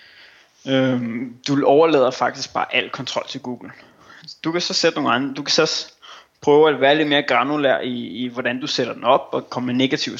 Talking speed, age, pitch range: 200 wpm, 20-39, 125-150 Hz